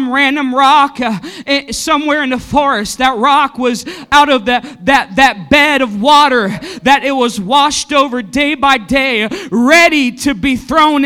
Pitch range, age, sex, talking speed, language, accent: 275-335 Hz, 40-59, male, 155 wpm, English, American